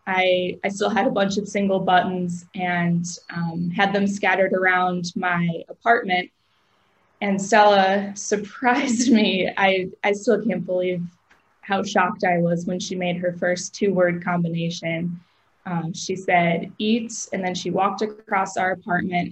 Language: English